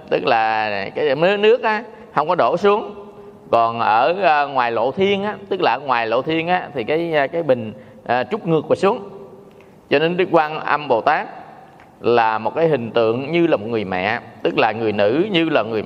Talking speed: 200 wpm